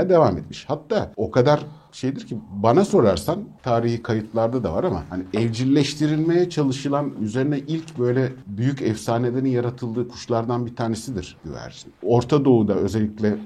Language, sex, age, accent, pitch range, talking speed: Turkish, male, 60-79, native, 95-125 Hz, 135 wpm